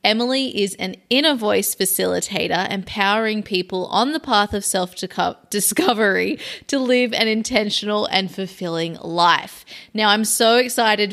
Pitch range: 190-225 Hz